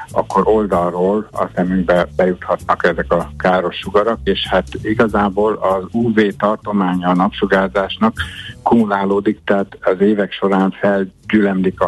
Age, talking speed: 60-79, 120 wpm